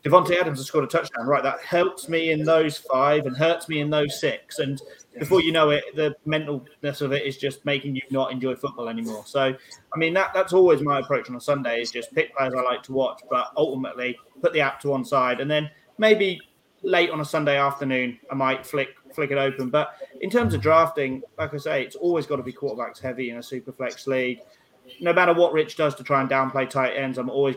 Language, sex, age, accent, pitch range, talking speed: English, male, 30-49, British, 130-160 Hz, 240 wpm